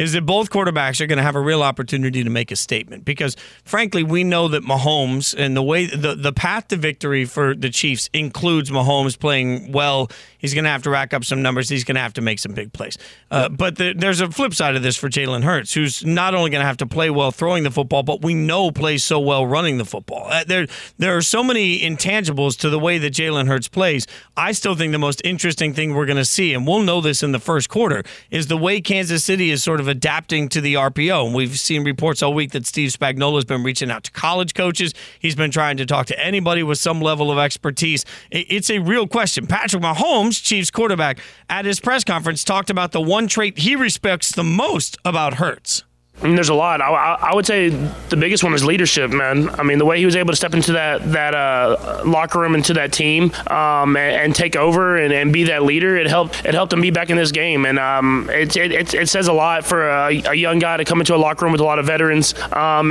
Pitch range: 145-175 Hz